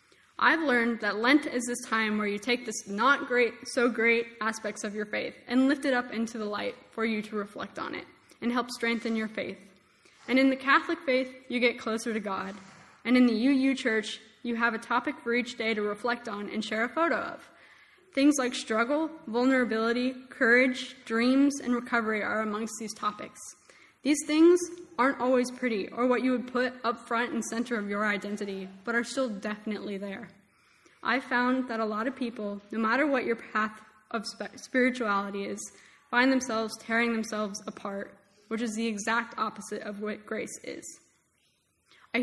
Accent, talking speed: American, 185 wpm